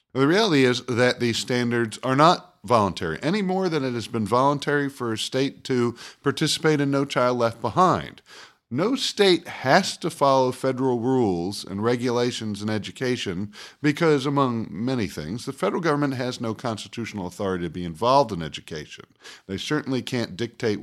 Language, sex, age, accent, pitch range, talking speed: English, male, 50-69, American, 110-150 Hz, 165 wpm